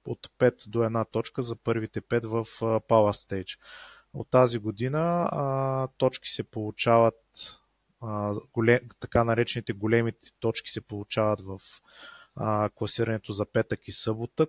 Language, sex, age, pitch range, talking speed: Bulgarian, male, 20-39, 110-125 Hz, 135 wpm